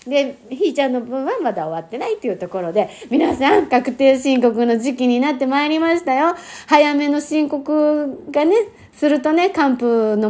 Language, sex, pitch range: Japanese, female, 215-310 Hz